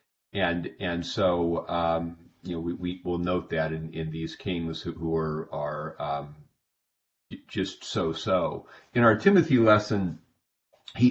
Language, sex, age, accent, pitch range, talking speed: English, male, 50-69, American, 85-105 Hz, 145 wpm